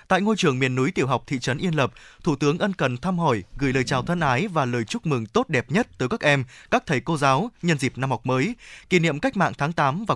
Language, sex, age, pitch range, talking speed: Vietnamese, male, 20-39, 135-190 Hz, 285 wpm